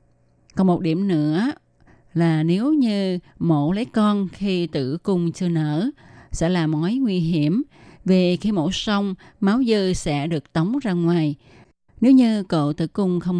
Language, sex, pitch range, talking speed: Vietnamese, female, 155-200 Hz, 165 wpm